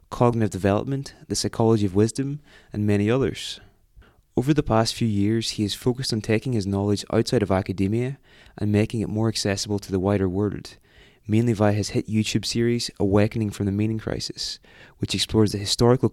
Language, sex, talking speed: English, male, 180 wpm